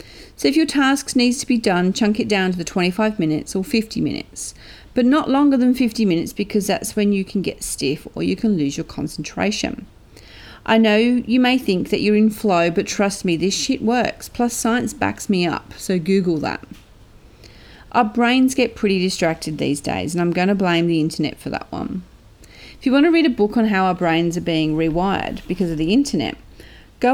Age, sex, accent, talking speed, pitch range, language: 40-59, female, Australian, 210 wpm, 165-225 Hz, English